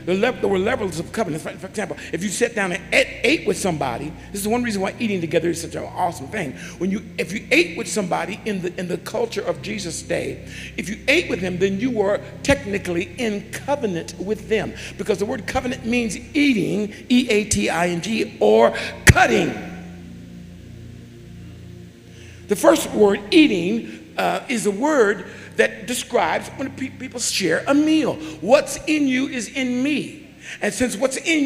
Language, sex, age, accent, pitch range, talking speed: English, male, 50-69, American, 185-275 Hz, 170 wpm